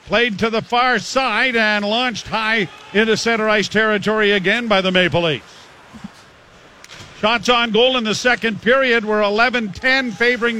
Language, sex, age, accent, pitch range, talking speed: English, male, 50-69, American, 220-295 Hz, 155 wpm